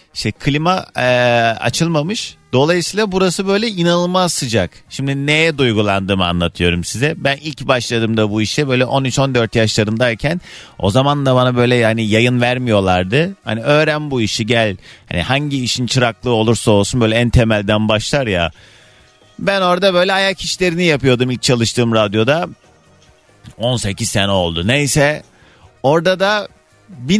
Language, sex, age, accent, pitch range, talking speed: Turkish, male, 40-59, native, 115-175 Hz, 140 wpm